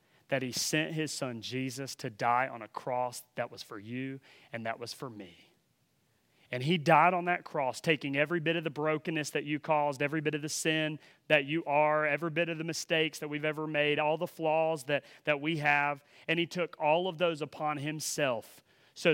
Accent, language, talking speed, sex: American, English, 215 wpm, male